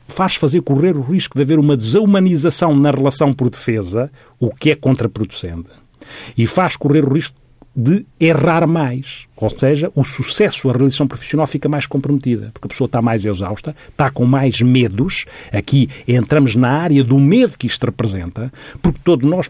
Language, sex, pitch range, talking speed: Portuguese, male, 125-145 Hz, 175 wpm